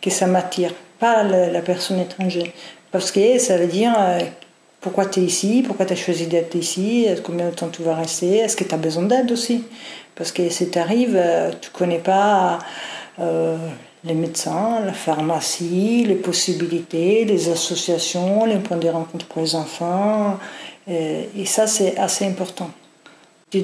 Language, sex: French, female